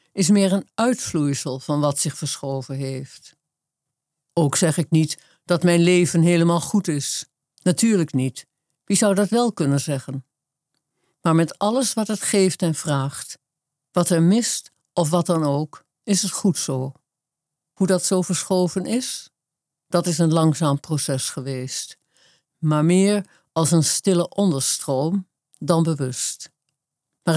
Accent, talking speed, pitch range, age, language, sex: Dutch, 145 wpm, 145-185 Hz, 50-69, Dutch, female